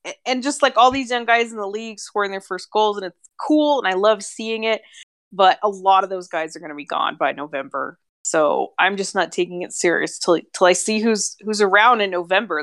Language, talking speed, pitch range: English, 240 wpm, 180-225 Hz